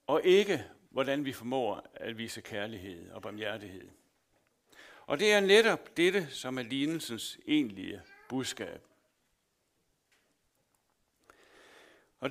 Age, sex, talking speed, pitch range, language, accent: 60-79, male, 100 wpm, 145-225 Hz, Danish, native